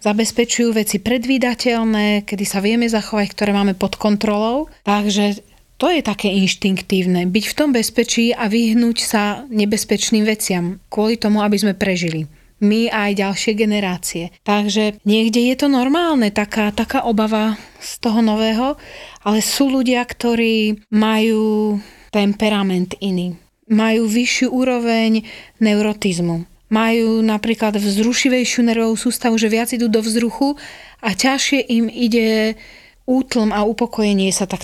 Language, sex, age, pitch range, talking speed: Slovak, female, 30-49, 210-235 Hz, 130 wpm